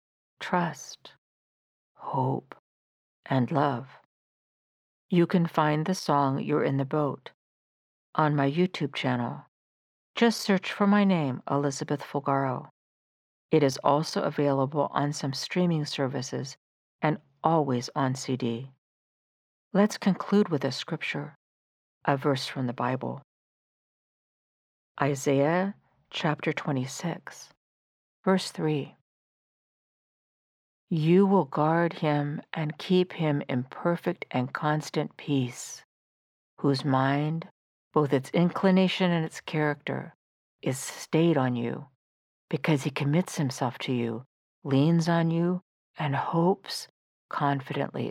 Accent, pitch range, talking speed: American, 135-170 Hz, 110 wpm